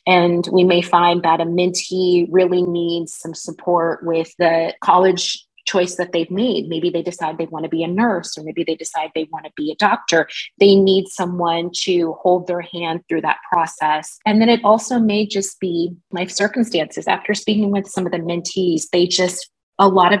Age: 20-39